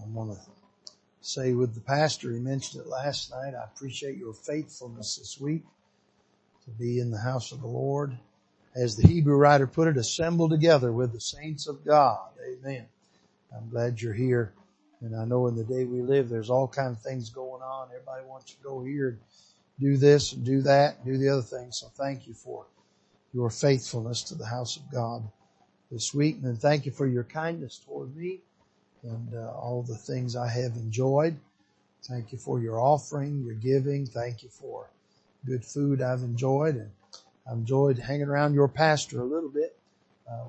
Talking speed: 190 wpm